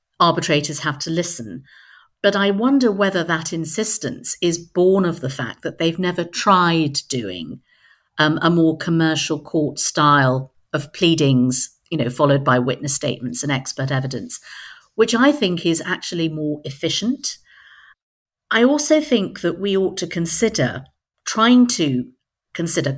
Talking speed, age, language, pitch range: 145 wpm, 50-69, English, 145-185 Hz